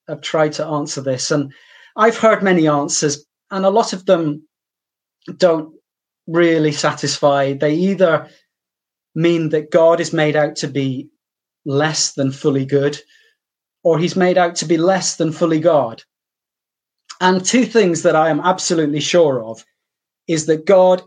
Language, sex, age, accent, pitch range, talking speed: English, male, 30-49, British, 150-205 Hz, 155 wpm